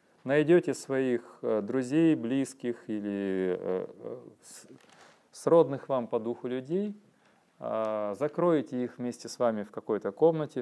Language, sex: Russian, male